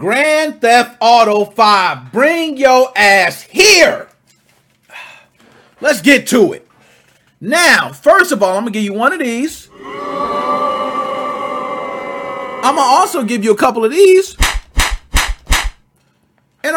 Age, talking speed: 40-59, 120 wpm